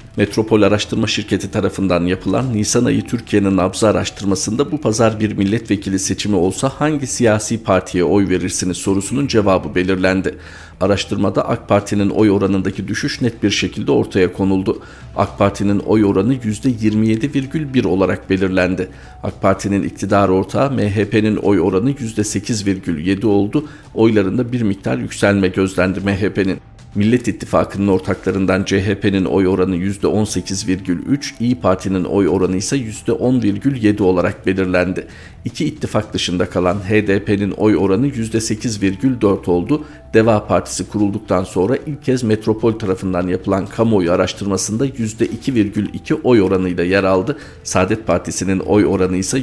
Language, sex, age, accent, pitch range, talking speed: Turkish, male, 50-69, native, 95-110 Hz, 130 wpm